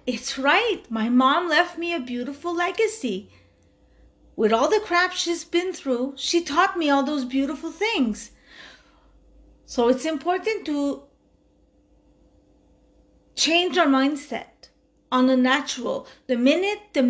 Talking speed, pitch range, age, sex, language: 125 wpm, 230-330 Hz, 30-49, female, English